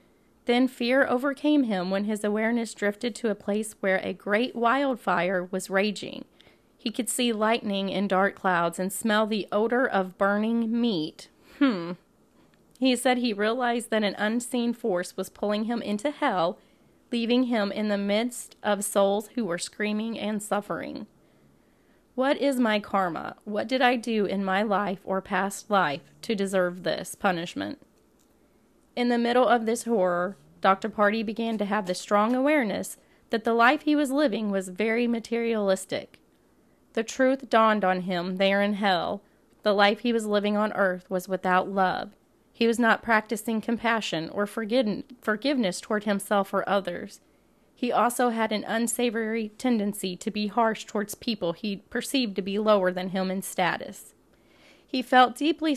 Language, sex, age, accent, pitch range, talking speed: English, female, 30-49, American, 195-240 Hz, 160 wpm